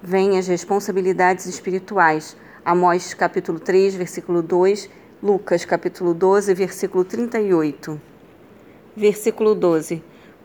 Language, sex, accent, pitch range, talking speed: Portuguese, female, Brazilian, 180-210 Hz, 90 wpm